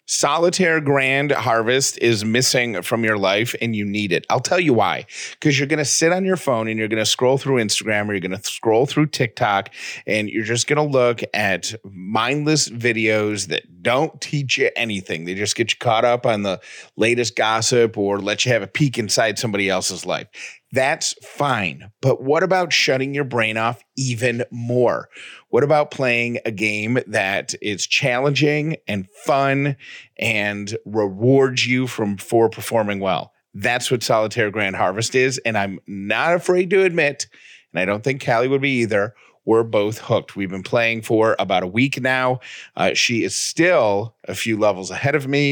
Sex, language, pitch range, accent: male, English, 105-135 Hz, American